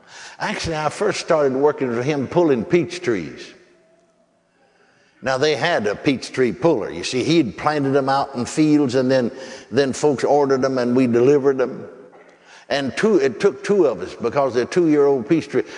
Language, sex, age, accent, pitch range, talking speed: English, male, 60-79, American, 135-160 Hz, 180 wpm